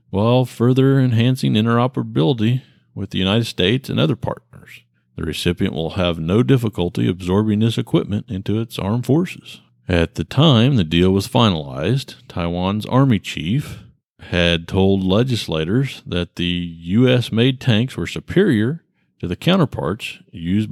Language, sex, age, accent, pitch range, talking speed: English, male, 50-69, American, 90-115 Hz, 135 wpm